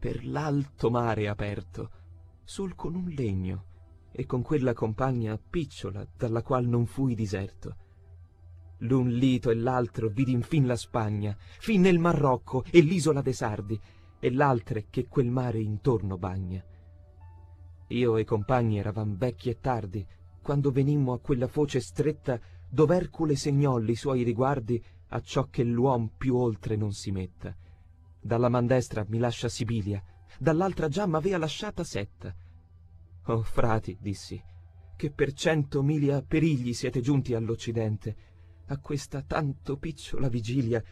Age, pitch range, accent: 30-49, 95-135 Hz, native